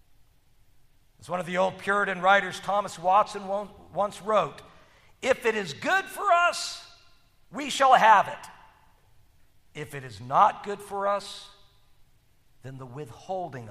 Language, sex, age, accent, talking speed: English, male, 50-69, American, 135 wpm